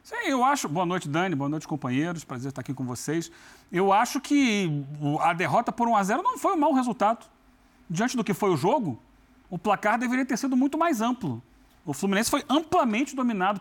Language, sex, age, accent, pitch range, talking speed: Portuguese, male, 40-59, Brazilian, 165-245 Hz, 200 wpm